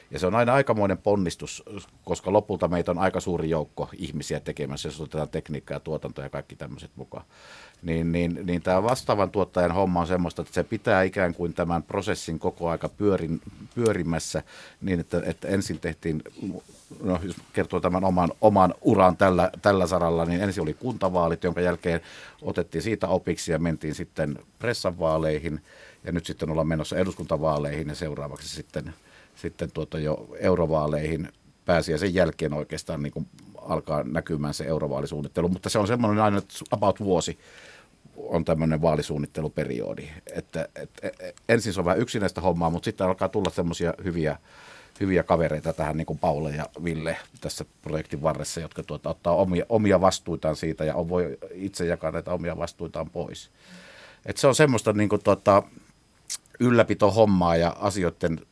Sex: male